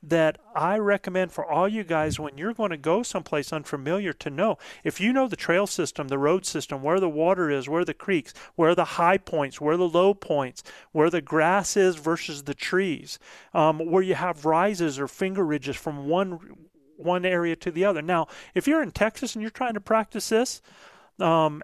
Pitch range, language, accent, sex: 150-195 Hz, English, American, male